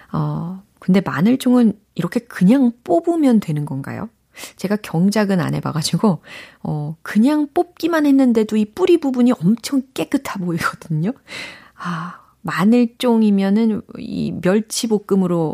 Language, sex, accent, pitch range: Korean, female, native, 155-230 Hz